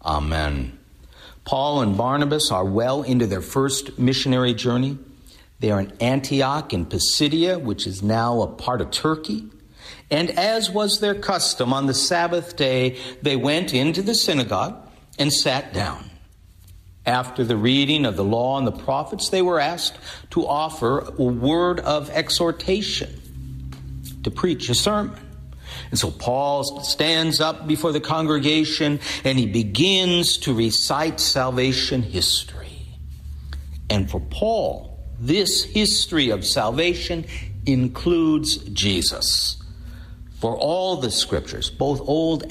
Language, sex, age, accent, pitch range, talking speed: English, male, 50-69, American, 95-155 Hz, 130 wpm